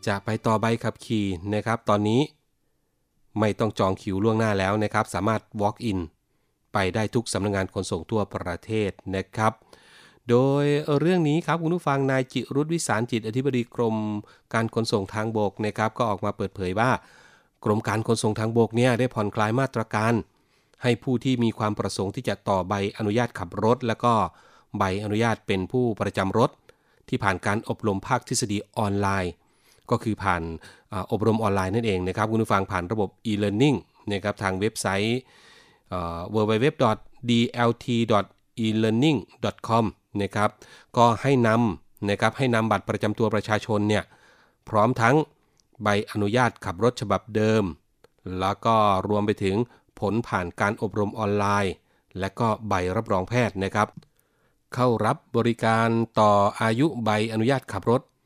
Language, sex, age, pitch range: Thai, male, 30-49, 100-120 Hz